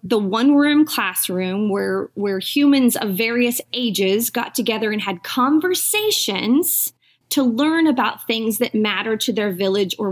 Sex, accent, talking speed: female, American, 140 wpm